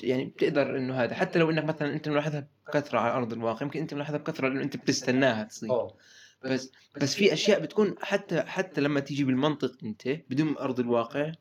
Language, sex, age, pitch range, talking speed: Arabic, male, 20-39, 125-155 Hz, 190 wpm